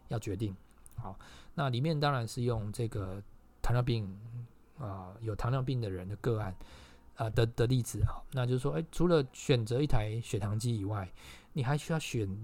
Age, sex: 20-39, male